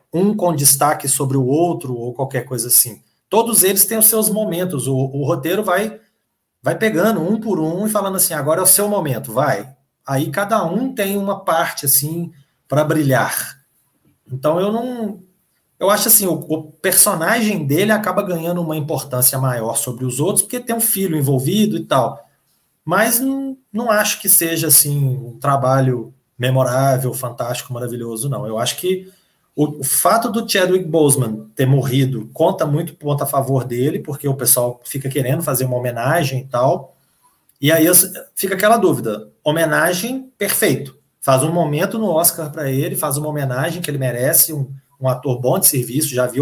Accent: Brazilian